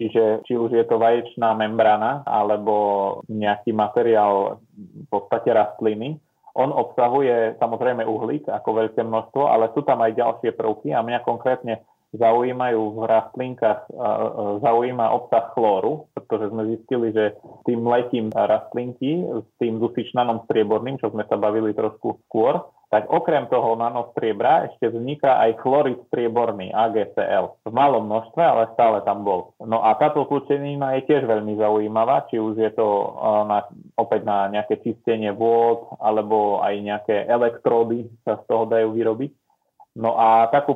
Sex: male